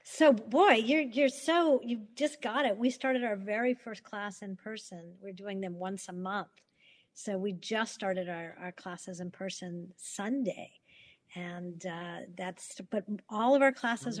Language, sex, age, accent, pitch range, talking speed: English, female, 50-69, American, 195-235 Hz, 175 wpm